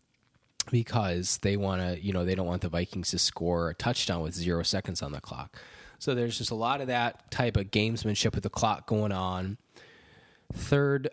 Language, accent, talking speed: English, American, 200 wpm